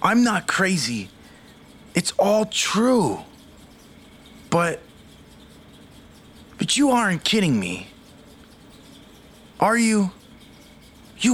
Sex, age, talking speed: male, 30-49, 80 wpm